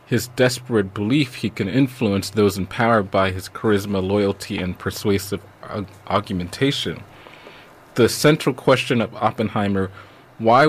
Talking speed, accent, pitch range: 125 wpm, American, 100-120 Hz